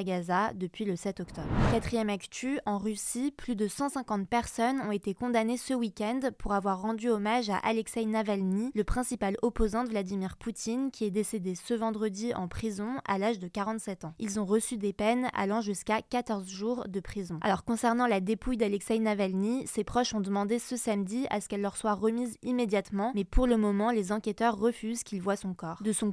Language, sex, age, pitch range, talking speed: French, female, 20-39, 205-235 Hz, 195 wpm